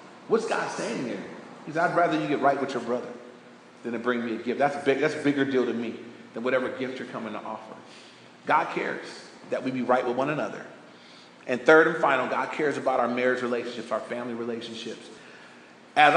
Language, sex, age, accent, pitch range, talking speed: English, male, 40-59, American, 125-160 Hz, 210 wpm